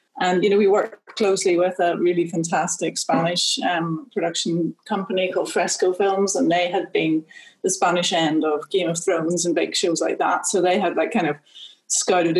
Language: English